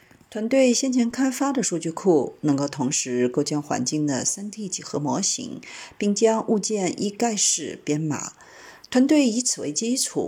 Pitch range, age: 150-240 Hz, 50-69